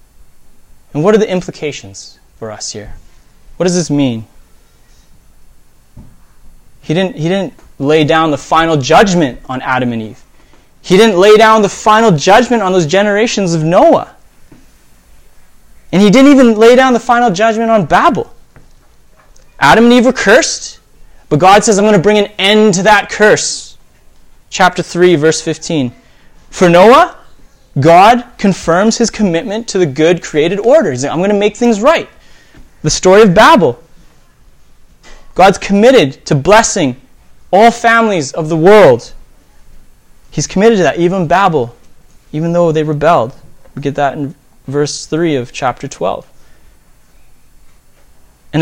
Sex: male